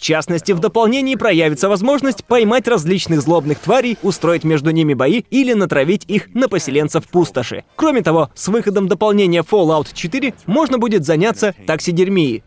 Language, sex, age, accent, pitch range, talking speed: Russian, male, 20-39, native, 150-220 Hz, 150 wpm